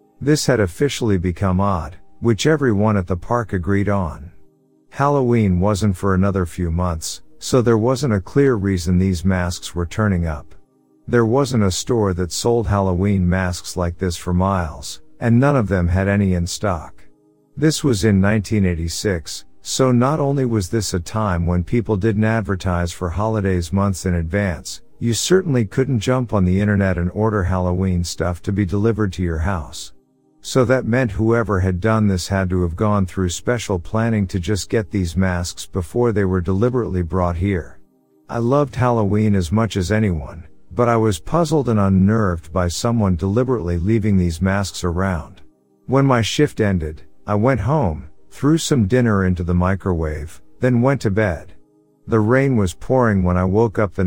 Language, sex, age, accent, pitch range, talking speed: English, male, 50-69, American, 90-115 Hz, 175 wpm